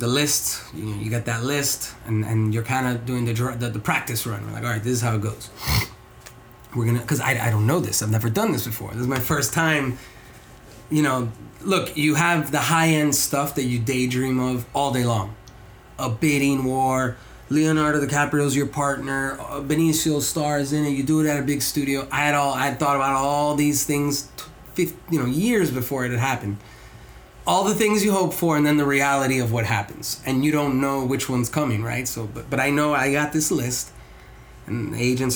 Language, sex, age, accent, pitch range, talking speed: English, male, 20-39, American, 120-145 Hz, 220 wpm